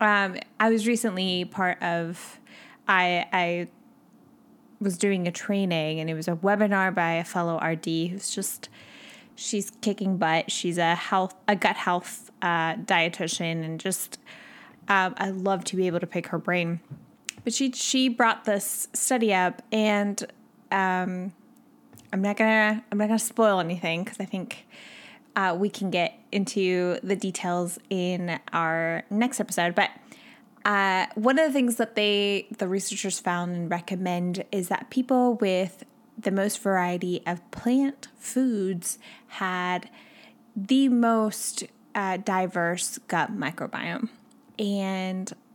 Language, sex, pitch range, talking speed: English, female, 180-225 Hz, 140 wpm